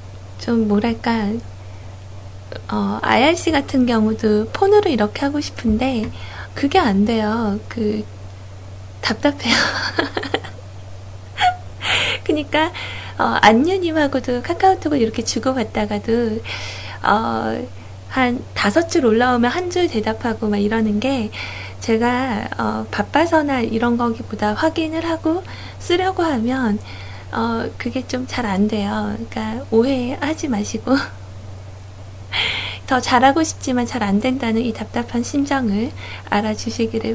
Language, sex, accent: Korean, female, native